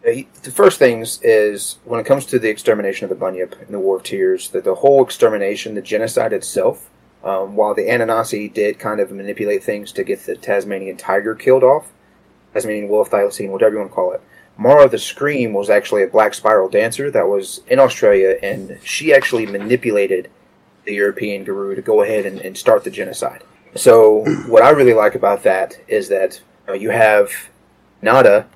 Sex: male